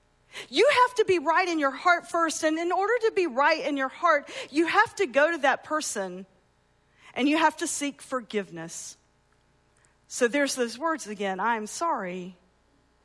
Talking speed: 175 wpm